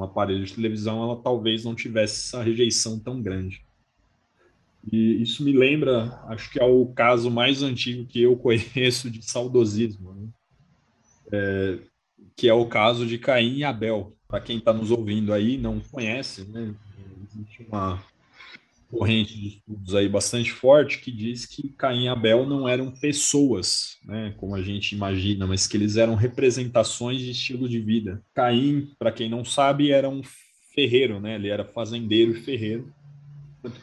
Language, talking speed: Portuguese, 165 wpm